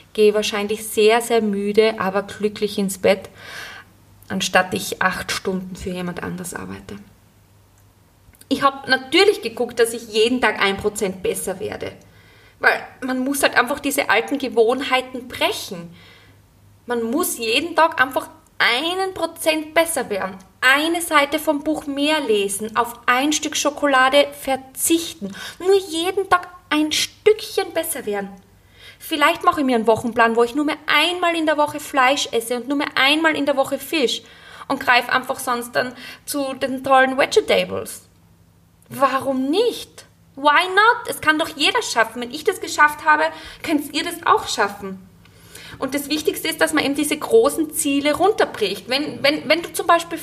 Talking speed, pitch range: 160 wpm, 220-310 Hz